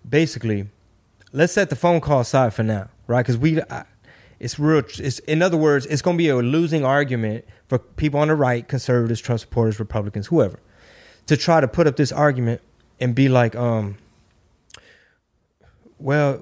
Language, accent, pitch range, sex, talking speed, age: English, American, 115-165 Hz, male, 175 wpm, 20-39